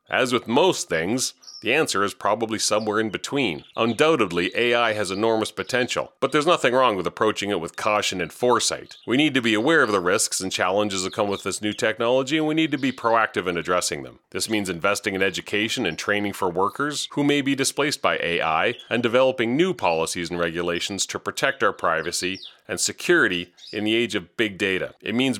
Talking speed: 205 wpm